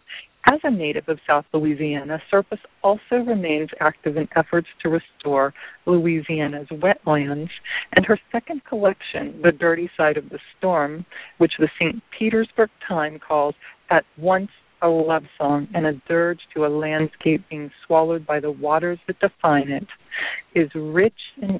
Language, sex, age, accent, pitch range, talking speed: English, female, 40-59, American, 150-180 Hz, 150 wpm